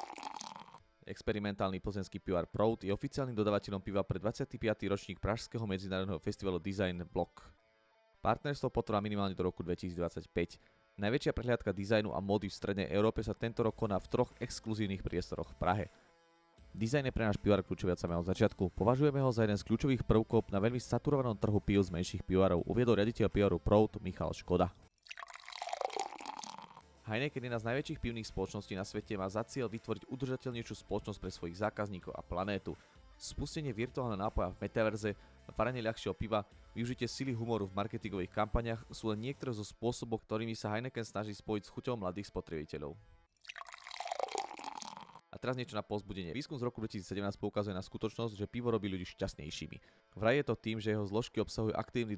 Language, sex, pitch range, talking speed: Slovak, male, 95-120 Hz, 165 wpm